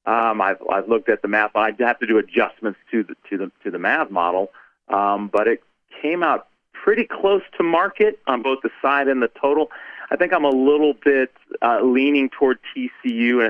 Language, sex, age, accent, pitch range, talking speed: English, male, 40-59, American, 110-150 Hz, 210 wpm